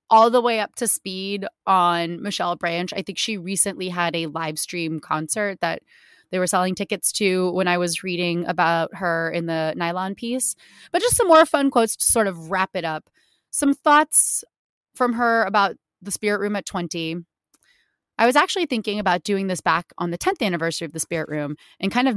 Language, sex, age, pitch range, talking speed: English, female, 20-39, 170-220 Hz, 205 wpm